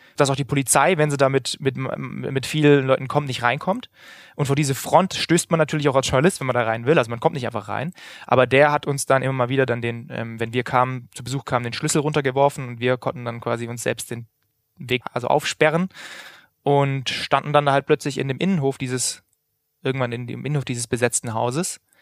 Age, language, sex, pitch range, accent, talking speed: 20-39, German, male, 120-145 Hz, German, 230 wpm